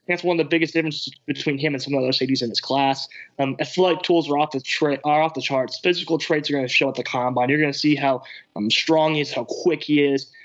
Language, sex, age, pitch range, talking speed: English, male, 20-39, 140-160 Hz, 300 wpm